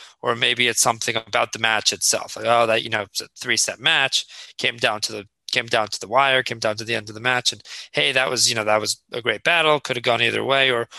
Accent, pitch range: American, 115-135 Hz